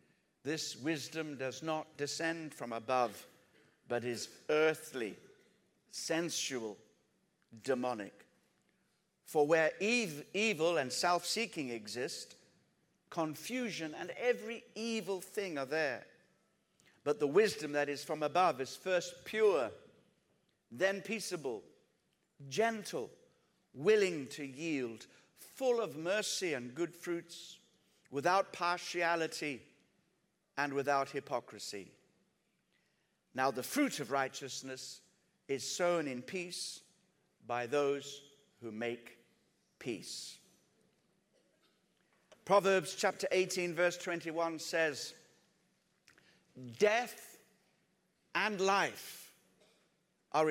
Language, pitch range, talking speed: English, 140-190 Hz, 90 wpm